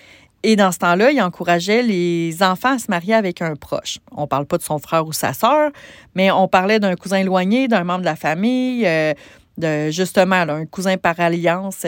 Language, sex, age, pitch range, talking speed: French, female, 30-49, 165-215 Hz, 215 wpm